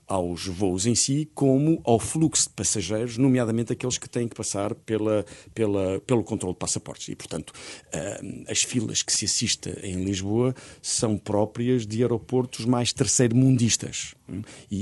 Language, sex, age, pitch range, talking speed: Portuguese, male, 50-69, 95-130 Hz, 140 wpm